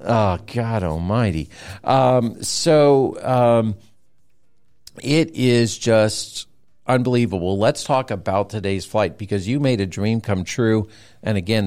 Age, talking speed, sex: 50-69, 125 wpm, male